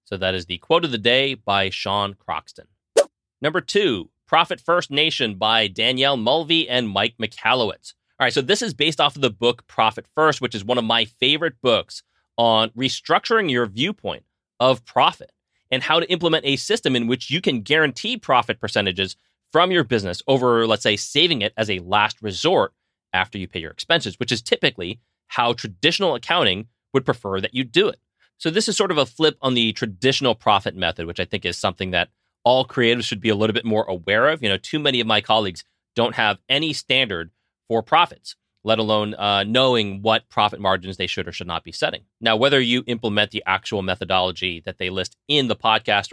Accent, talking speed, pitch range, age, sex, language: American, 205 wpm, 105-135 Hz, 30-49, male, English